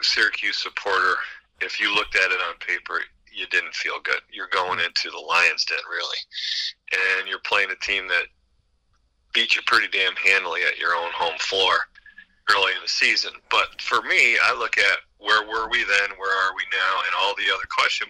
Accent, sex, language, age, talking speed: American, male, English, 40-59, 195 wpm